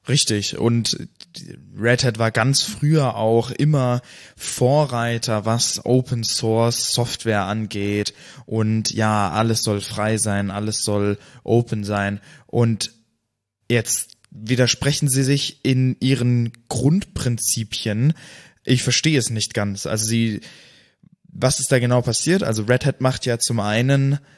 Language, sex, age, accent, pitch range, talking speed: German, male, 20-39, German, 110-135 Hz, 130 wpm